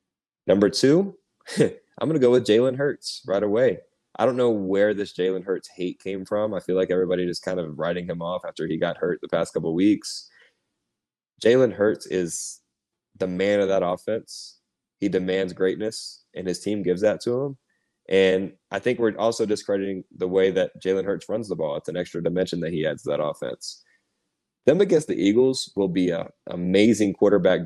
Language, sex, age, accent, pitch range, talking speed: English, male, 20-39, American, 95-110 Hz, 195 wpm